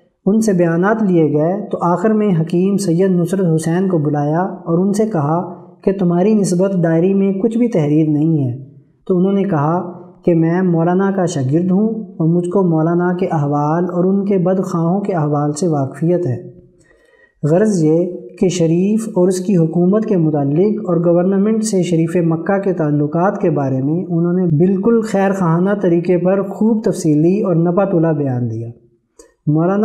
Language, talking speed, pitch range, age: Urdu, 175 wpm, 165-195 Hz, 20-39